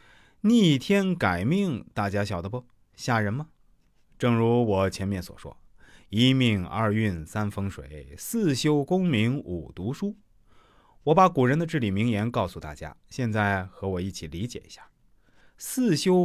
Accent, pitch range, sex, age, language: native, 100-155 Hz, male, 30-49, Chinese